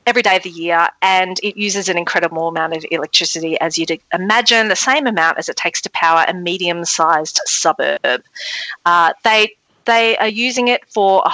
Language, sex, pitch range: English, female, 170-210 Hz